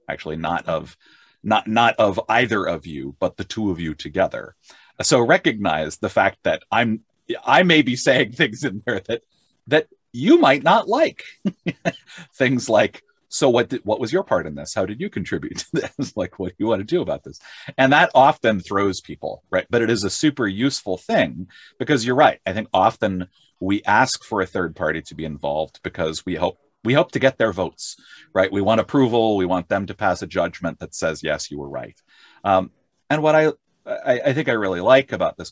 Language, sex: English, male